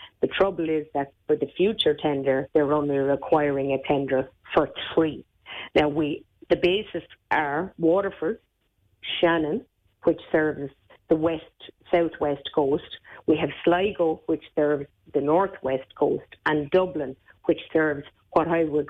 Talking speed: 135 wpm